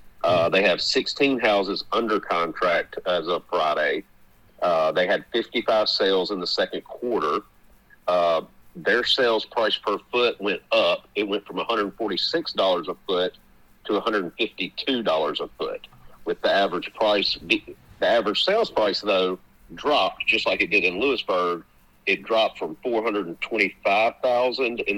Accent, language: American, English